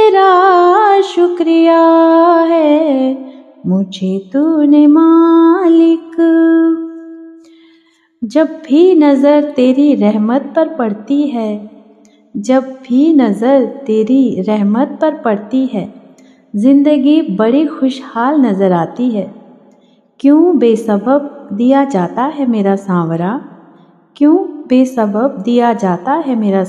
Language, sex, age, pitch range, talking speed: Hindi, female, 30-49, 210-285 Hz, 90 wpm